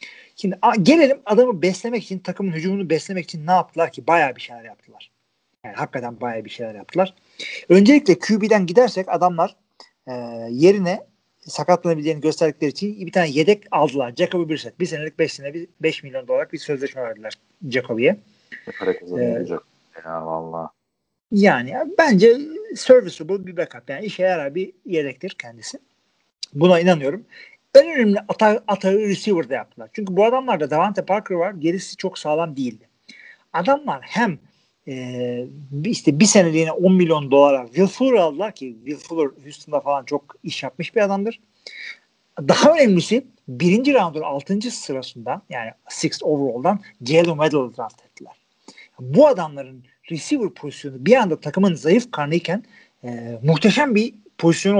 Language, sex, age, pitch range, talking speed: Turkish, male, 40-59, 140-200 Hz, 140 wpm